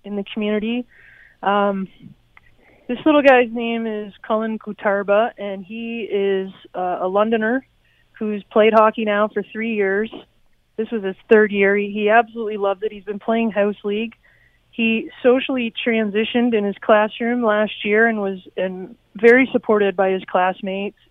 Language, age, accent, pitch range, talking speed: English, 20-39, American, 200-230 Hz, 155 wpm